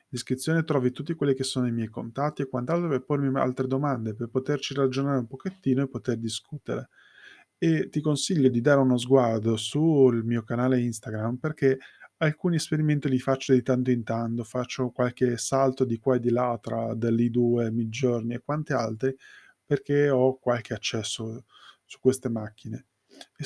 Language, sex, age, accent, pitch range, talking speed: Italian, male, 20-39, native, 120-140 Hz, 170 wpm